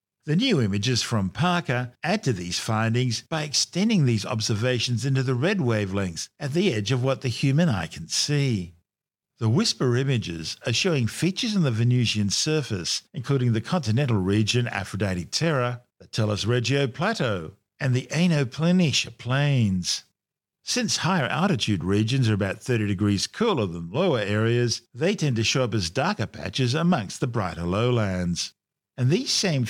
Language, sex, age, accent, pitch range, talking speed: English, male, 50-69, Australian, 105-150 Hz, 155 wpm